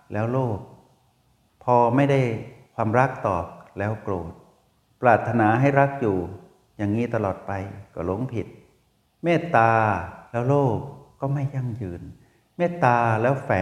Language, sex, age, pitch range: Thai, male, 60-79, 105-130 Hz